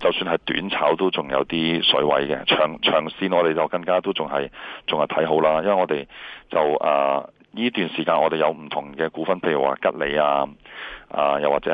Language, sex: Chinese, male